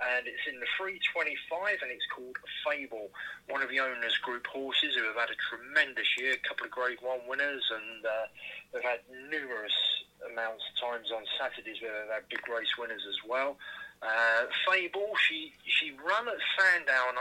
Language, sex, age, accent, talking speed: English, male, 30-49, British, 180 wpm